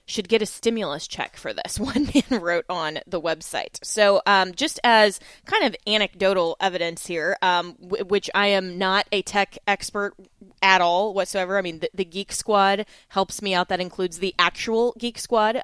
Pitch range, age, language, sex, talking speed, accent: 175-200 Hz, 20-39, English, female, 190 wpm, American